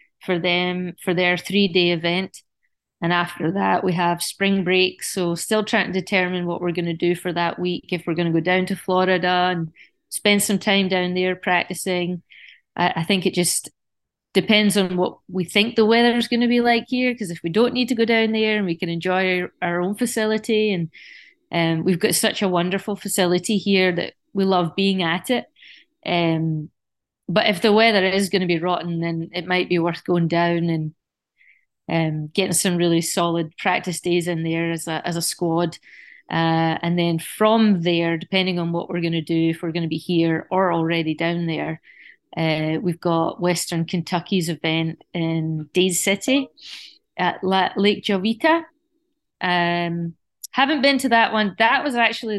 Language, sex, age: English, female, 20-39